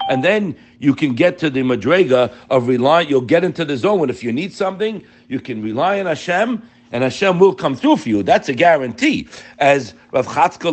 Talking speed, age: 215 wpm, 60-79